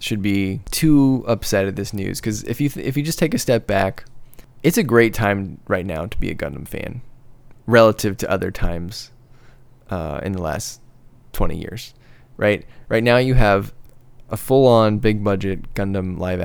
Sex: male